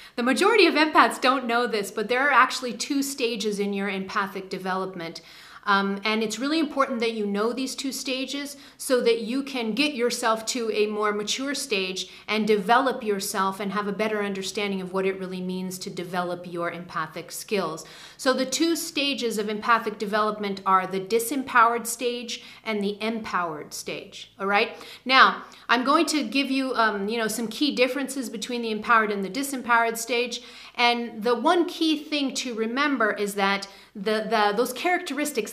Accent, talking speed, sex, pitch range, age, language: American, 175 wpm, female, 210-270 Hz, 40-59, English